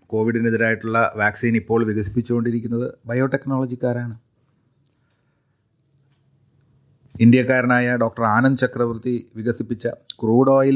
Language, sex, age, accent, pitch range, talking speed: Malayalam, male, 30-49, native, 105-130 Hz, 65 wpm